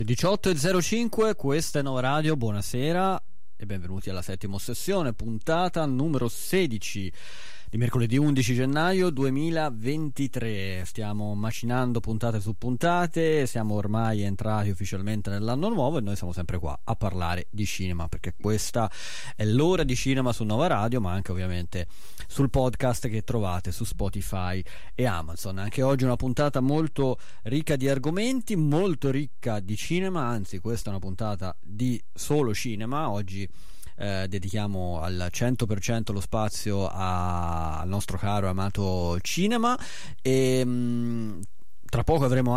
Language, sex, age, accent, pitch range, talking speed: Italian, male, 30-49, native, 100-135 Hz, 135 wpm